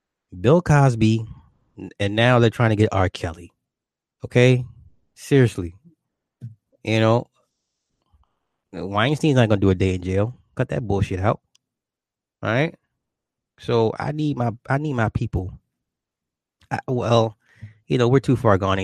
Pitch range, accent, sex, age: 95-120 Hz, American, male, 20-39